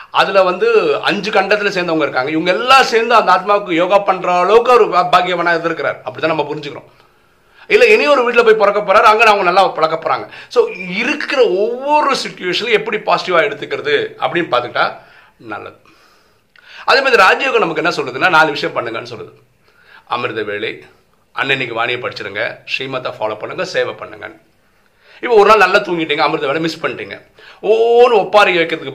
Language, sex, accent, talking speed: Tamil, male, native, 85 wpm